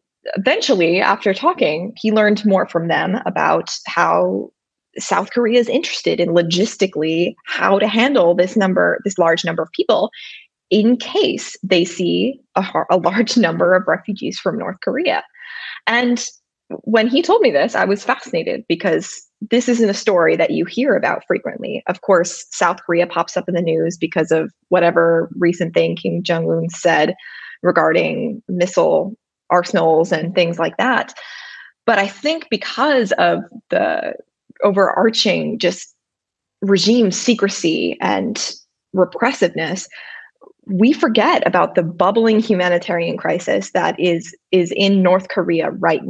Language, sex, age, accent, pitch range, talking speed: English, female, 20-39, American, 175-235 Hz, 140 wpm